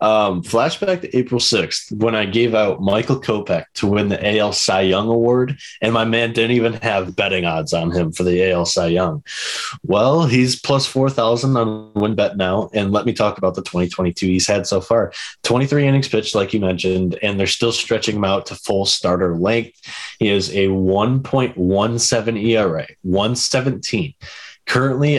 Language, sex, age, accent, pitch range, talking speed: English, male, 20-39, American, 95-115 Hz, 180 wpm